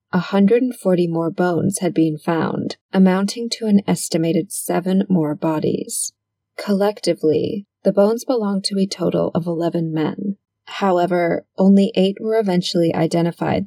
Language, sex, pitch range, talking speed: English, female, 165-200 Hz, 125 wpm